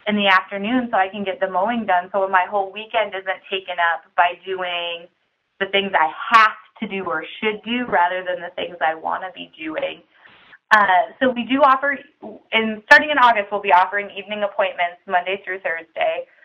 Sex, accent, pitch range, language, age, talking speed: female, American, 180-225 Hz, English, 20-39, 195 wpm